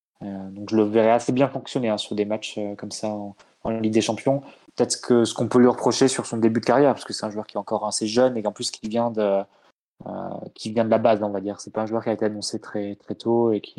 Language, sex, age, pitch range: French, male, 20-39, 105-115 Hz